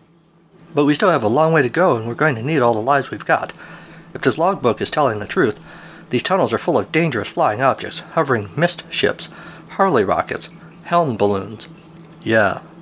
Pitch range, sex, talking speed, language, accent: 120-170 Hz, male, 195 wpm, English, American